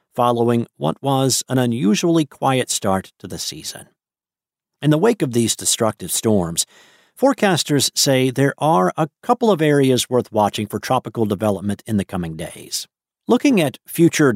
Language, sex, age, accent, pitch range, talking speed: English, male, 50-69, American, 105-135 Hz, 155 wpm